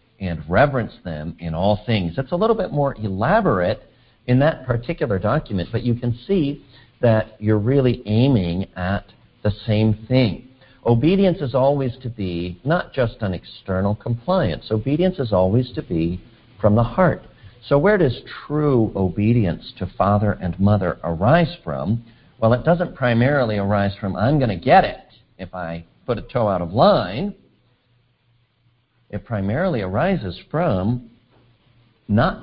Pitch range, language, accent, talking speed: 95-130 Hz, English, American, 150 wpm